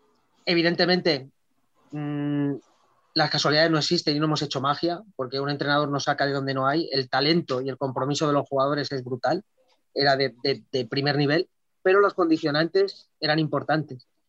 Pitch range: 140-170 Hz